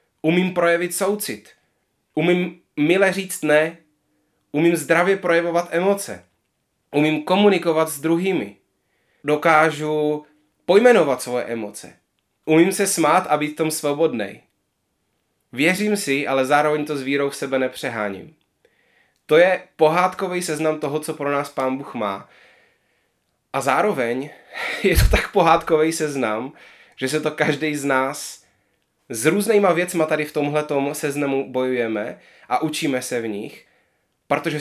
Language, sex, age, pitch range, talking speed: Czech, male, 20-39, 130-170 Hz, 130 wpm